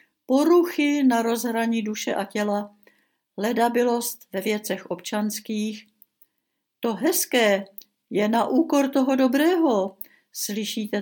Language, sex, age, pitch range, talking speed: Czech, female, 70-89, 215-280 Hz, 100 wpm